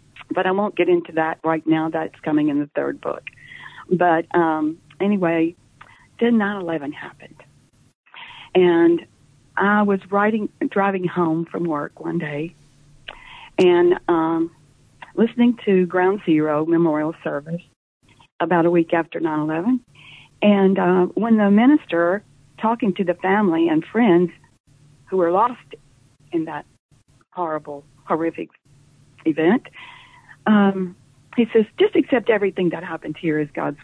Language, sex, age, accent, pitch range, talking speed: English, female, 50-69, American, 165-230 Hz, 130 wpm